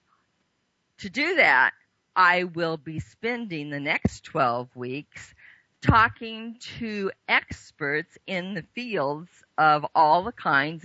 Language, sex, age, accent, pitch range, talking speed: English, female, 50-69, American, 145-215 Hz, 115 wpm